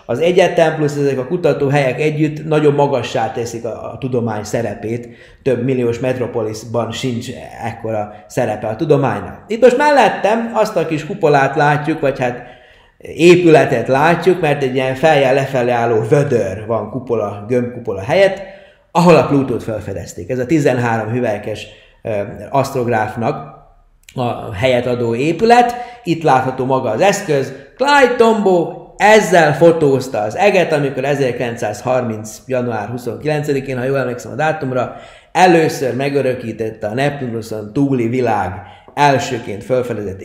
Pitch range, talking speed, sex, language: 115-150 Hz, 130 wpm, male, Hungarian